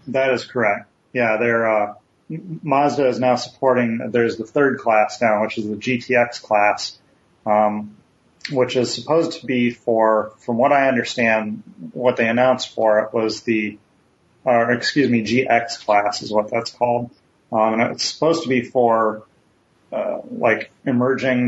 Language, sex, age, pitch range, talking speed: English, male, 30-49, 105-125 Hz, 160 wpm